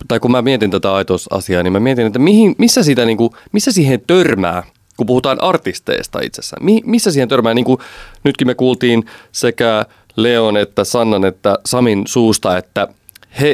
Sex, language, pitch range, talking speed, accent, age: male, Finnish, 95-125 Hz, 175 wpm, native, 30-49